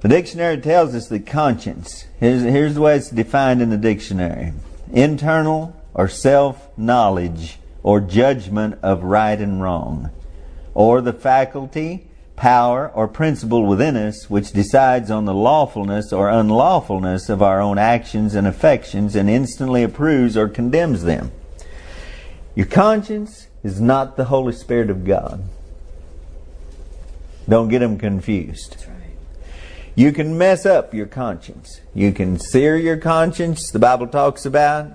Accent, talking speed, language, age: American, 140 wpm, English, 50-69